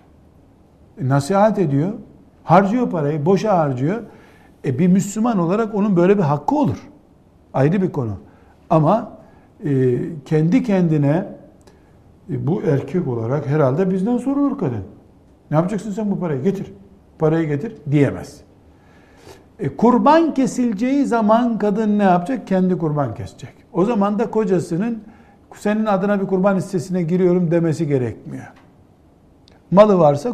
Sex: male